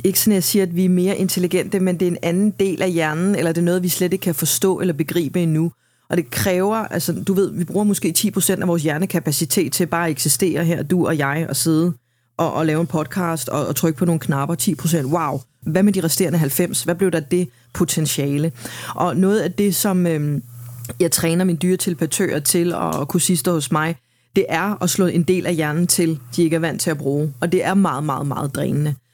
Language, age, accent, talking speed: Danish, 30-49, native, 240 wpm